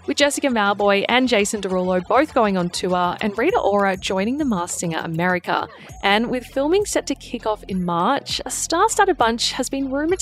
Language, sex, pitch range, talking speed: English, female, 190-270 Hz, 195 wpm